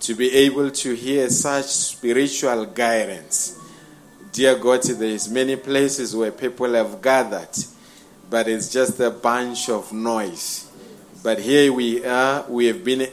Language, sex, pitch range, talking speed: English, male, 120-140 Hz, 145 wpm